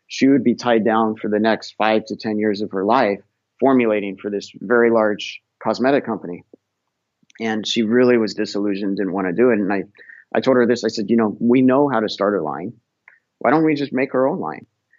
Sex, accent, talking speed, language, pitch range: male, American, 230 wpm, English, 100-120 Hz